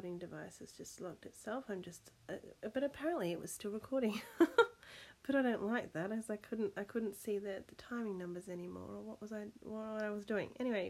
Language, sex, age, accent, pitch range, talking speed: English, female, 30-49, Australian, 190-245 Hz, 215 wpm